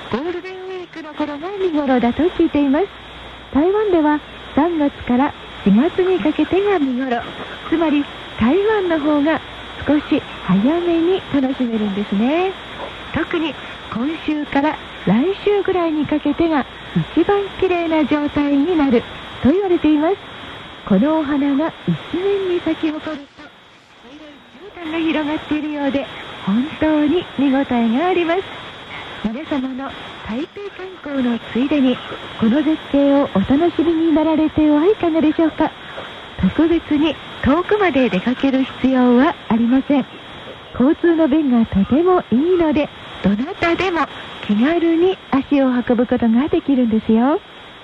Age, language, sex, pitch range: 40-59, Korean, female, 260-335 Hz